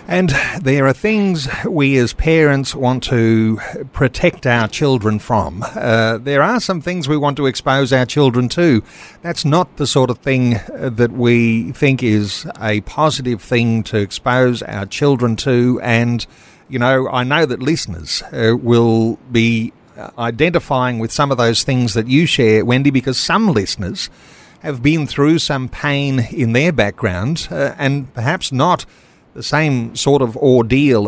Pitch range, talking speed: 115-150 Hz, 160 wpm